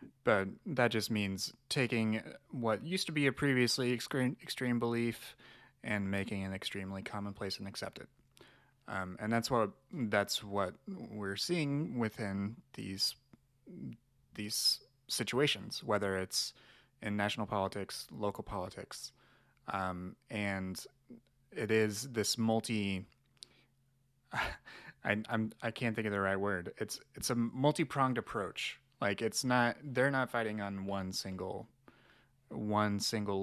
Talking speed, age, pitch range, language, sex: 125 wpm, 30-49, 100-130 Hz, English, male